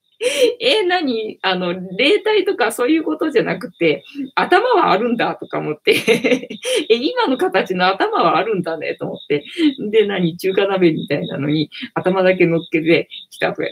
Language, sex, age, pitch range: Japanese, female, 20-39, 170-275 Hz